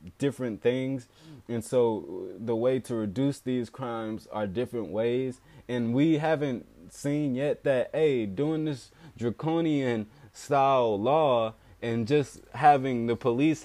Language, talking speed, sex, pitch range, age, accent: English, 135 wpm, male, 105-135 Hz, 20-39, American